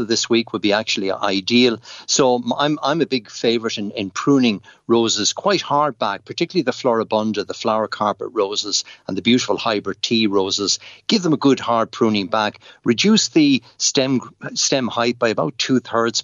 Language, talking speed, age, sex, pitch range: English, 175 wpm, 60-79, male, 105-130 Hz